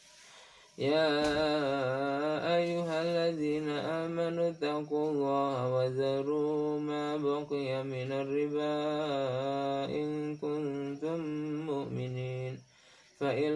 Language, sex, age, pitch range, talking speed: Indonesian, male, 20-39, 135-150 Hz, 65 wpm